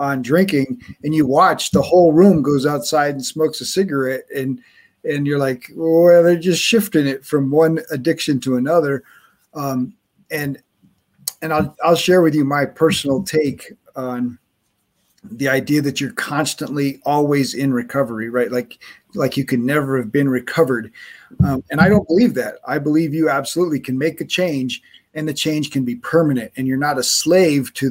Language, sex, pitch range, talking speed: English, male, 130-165 Hz, 180 wpm